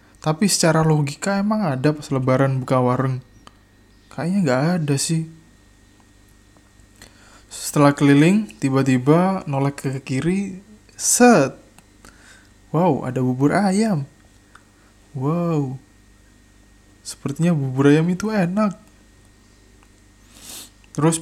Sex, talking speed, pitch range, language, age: male, 90 wpm, 120-155 Hz, Indonesian, 20-39